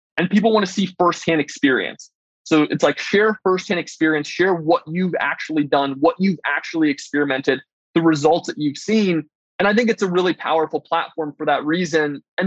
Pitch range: 155-190 Hz